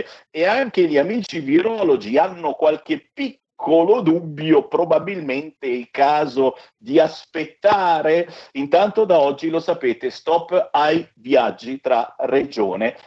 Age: 50-69